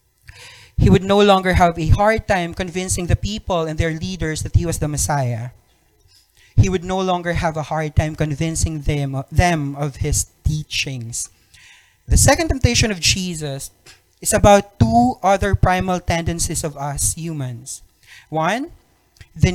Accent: Filipino